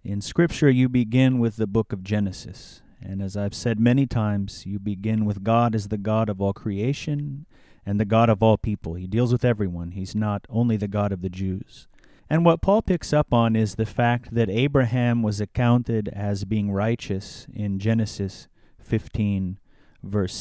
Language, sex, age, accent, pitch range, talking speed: English, male, 30-49, American, 100-120 Hz, 185 wpm